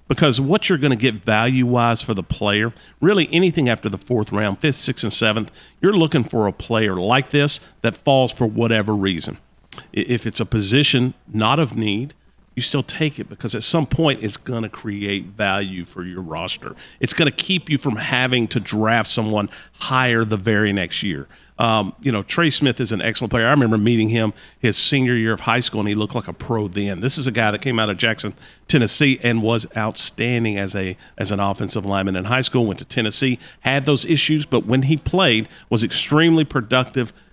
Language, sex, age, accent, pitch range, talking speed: English, male, 50-69, American, 105-130 Hz, 210 wpm